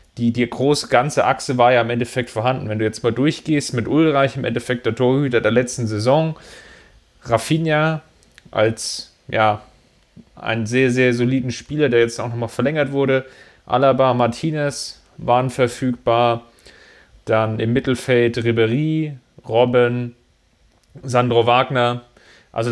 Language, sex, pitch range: German, male, 115-135 Hz